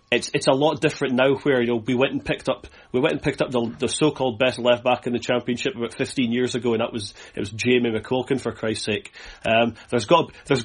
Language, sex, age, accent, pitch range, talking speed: English, male, 30-49, British, 120-140 Hz, 270 wpm